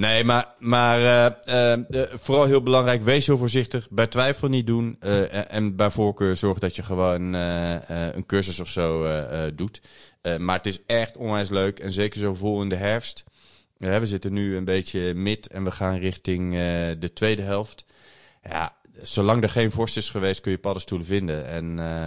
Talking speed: 205 wpm